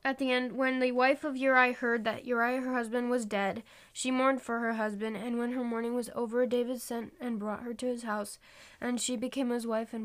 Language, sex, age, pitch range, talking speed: English, female, 10-29, 210-245 Hz, 240 wpm